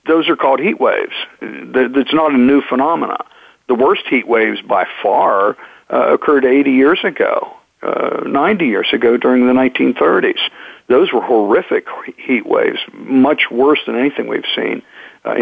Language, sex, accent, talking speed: English, male, American, 155 wpm